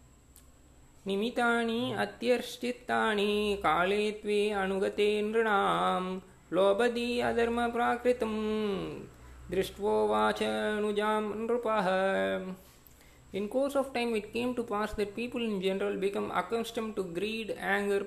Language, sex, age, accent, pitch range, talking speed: Tamil, male, 20-39, native, 185-230 Hz, 85 wpm